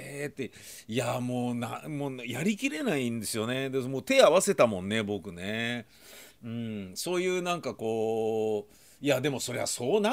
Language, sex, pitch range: Japanese, male, 105-145 Hz